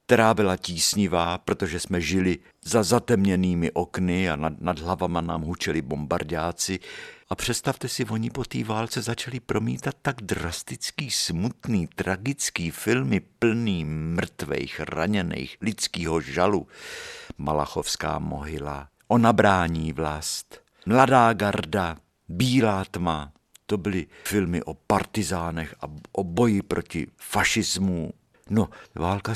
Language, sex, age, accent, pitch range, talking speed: Czech, male, 50-69, native, 85-110 Hz, 115 wpm